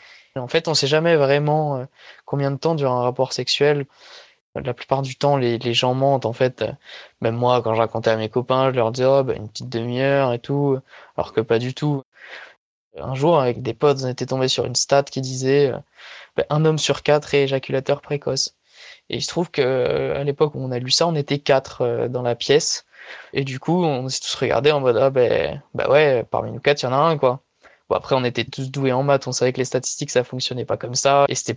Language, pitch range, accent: French, 125-145 Hz, French